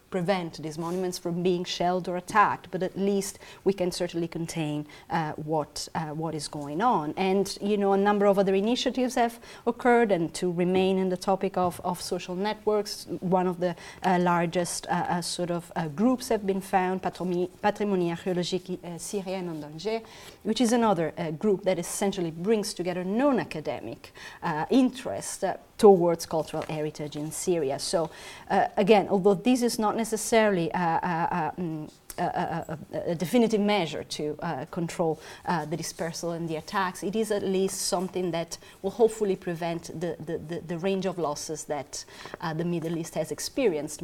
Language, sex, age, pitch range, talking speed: English, female, 30-49, 160-200 Hz, 170 wpm